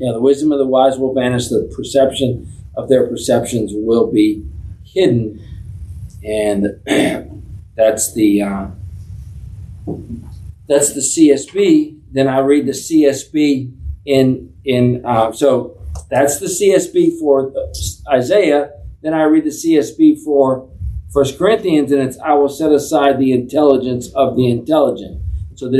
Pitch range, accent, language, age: 100-140 Hz, American, English, 50-69